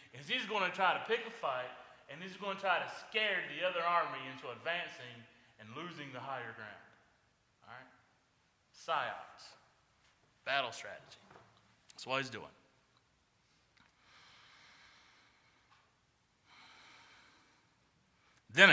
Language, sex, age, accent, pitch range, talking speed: English, male, 30-49, American, 105-135 Hz, 115 wpm